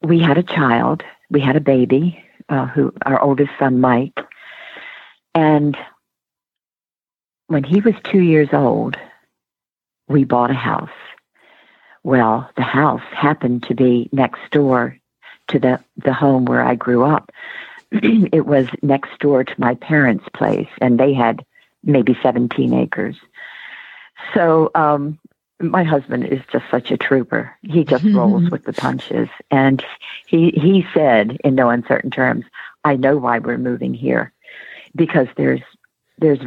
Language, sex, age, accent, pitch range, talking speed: English, female, 50-69, American, 130-160 Hz, 145 wpm